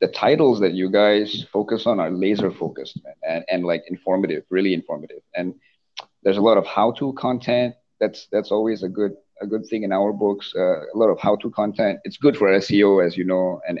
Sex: male